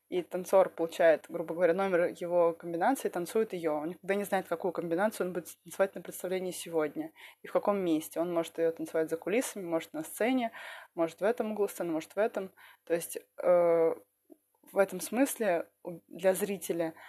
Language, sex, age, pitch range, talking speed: Russian, female, 20-39, 170-200 Hz, 185 wpm